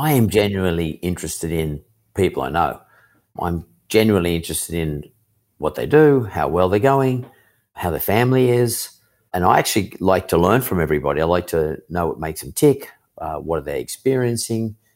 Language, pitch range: English, 85-115 Hz